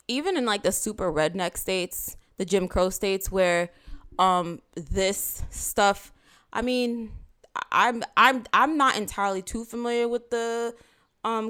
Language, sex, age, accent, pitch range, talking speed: English, female, 20-39, American, 185-235 Hz, 135 wpm